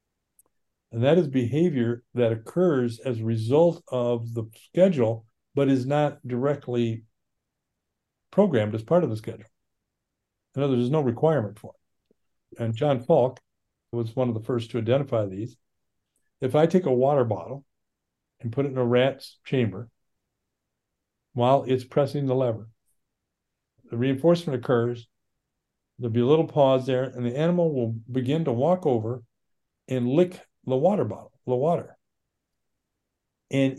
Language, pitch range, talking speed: English, 115-140 Hz, 145 wpm